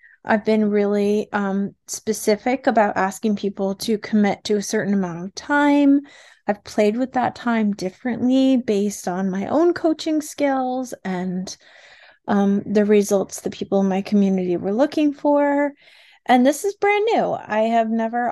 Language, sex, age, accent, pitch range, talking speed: English, female, 30-49, American, 205-260 Hz, 155 wpm